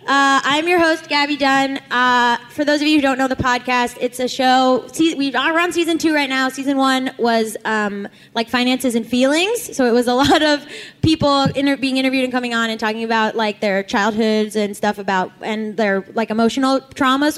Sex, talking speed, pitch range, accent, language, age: female, 205 wpm, 225-305 Hz, American, English, 10-29